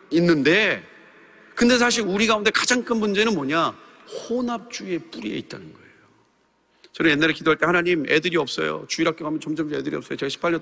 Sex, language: male, Korean